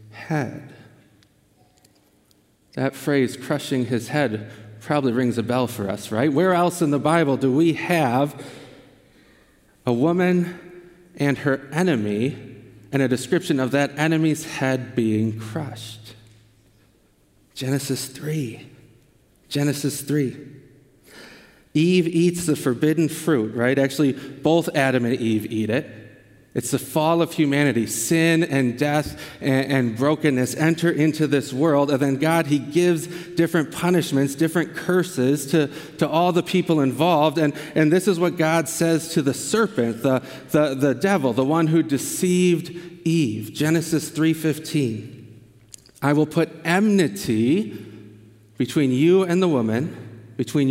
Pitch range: 125-160 Hz